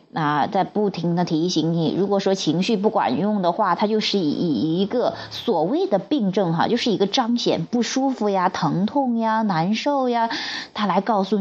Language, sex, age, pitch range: Chinese, female, 30-49, 175-235 Hz